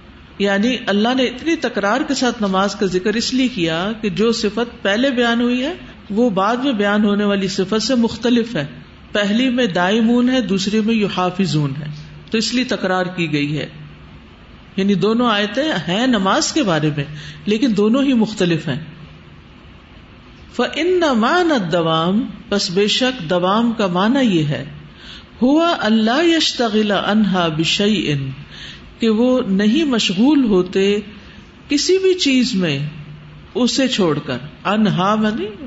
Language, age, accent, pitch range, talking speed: English, 50-69, Indian, 175-235 Hz, 135 wpm